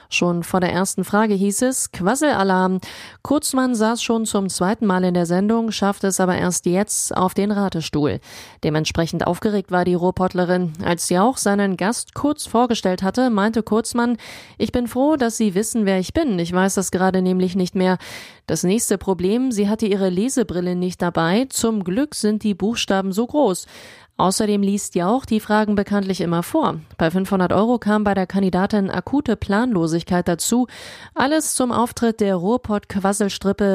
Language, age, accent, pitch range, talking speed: German, 30-49, German, 185-225 Hz, 170 wpm